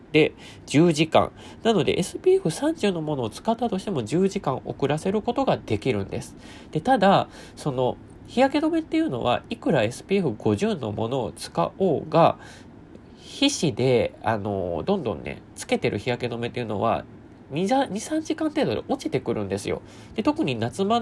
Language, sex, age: Japanese, male, 20-39